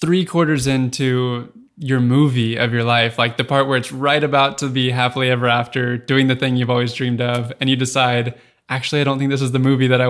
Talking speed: 240 wpm